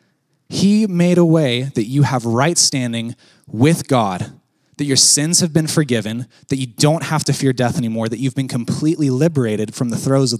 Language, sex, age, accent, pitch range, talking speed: English, male, 20-39, American, 140-190 Hz, 195 wpm